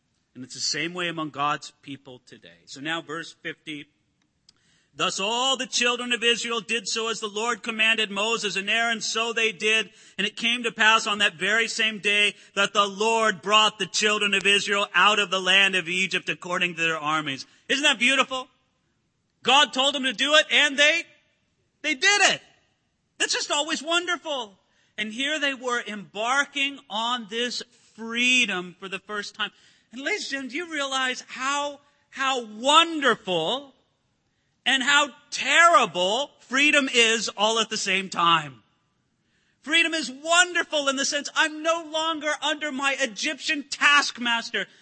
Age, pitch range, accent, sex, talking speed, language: 40-59, 205-290 Hz, American, male, 160 wpm, English